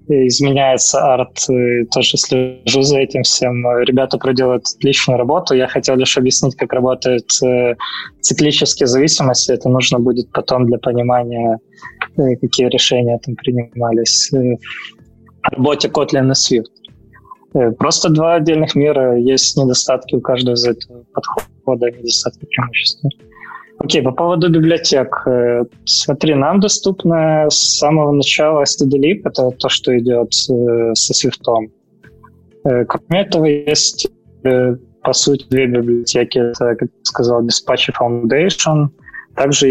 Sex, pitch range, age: male, 120-140 Hz, 20-39